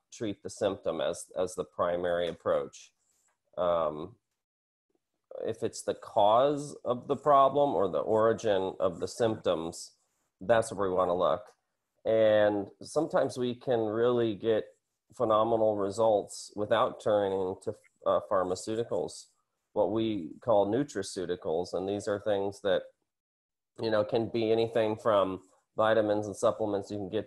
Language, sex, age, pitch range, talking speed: English, male, 30-49, 90-115 Hz, 135 wpm